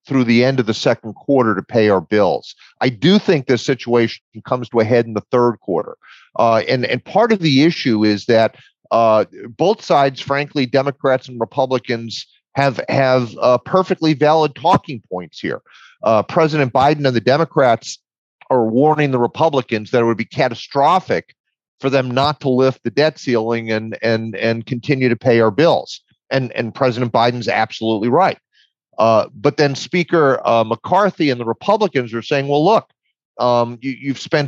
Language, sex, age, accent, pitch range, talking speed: English, male, 40-59, American, 120-145 Hz, 175 wpm